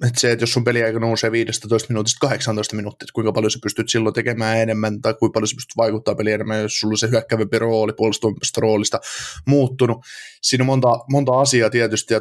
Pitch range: 110-125 Hz